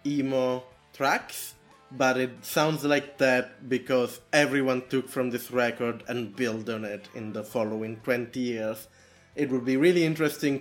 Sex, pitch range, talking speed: male, 115-145 Hz, 155 wpm